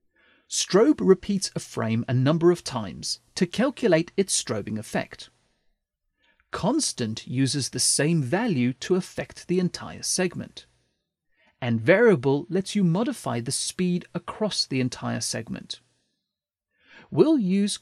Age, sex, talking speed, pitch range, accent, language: 40-59, male, 120 wpm, 125-195 Hz, British, English